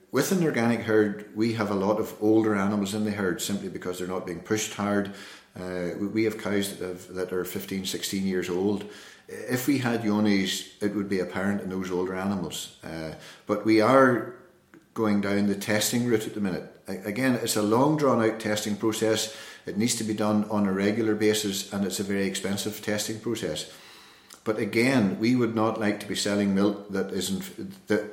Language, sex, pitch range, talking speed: English, male, 100-115 Hz, 200 wpm